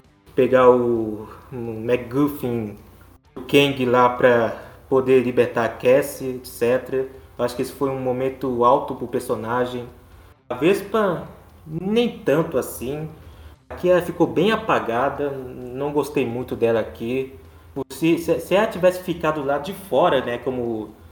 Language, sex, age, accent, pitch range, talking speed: Portuguese, male, 20-39, Brazilian, 125-155 Hz, 135 wpm